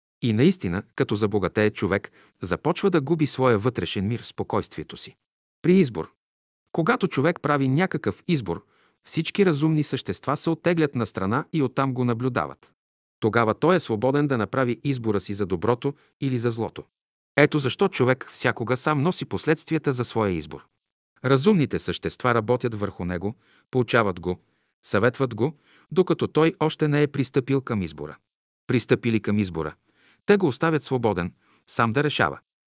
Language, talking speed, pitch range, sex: Bulgarian, 150 wpm, 105-145 Hz, male